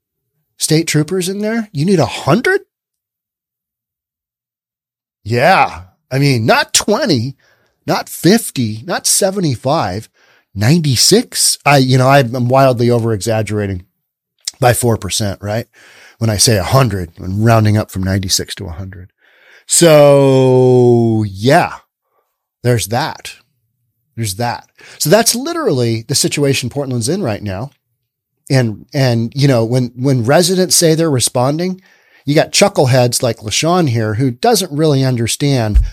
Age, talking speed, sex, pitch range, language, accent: 40-59, 125 wpm, male, 115-155 Hz, English, American